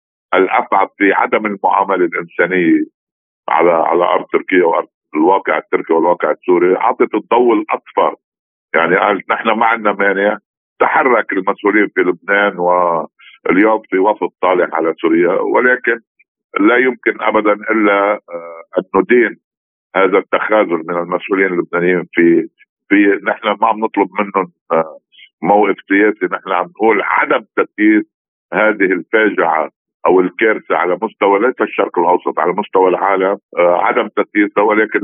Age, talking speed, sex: 50-69, 130 wpm, male